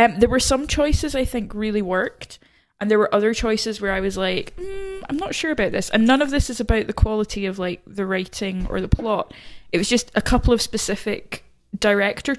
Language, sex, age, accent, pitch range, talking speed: English, female, 10-29, British, 200-250 Hz, 230 wpm